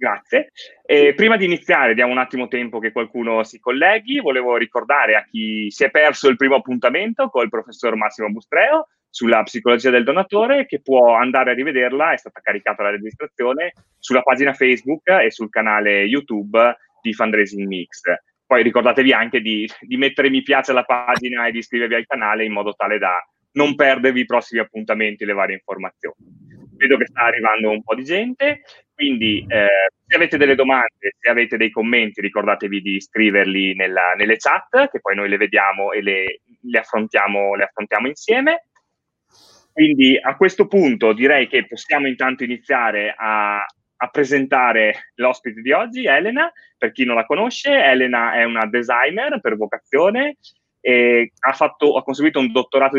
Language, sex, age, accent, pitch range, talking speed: Italian, male, 20-39, native, 110-145 Hz, 170 wpm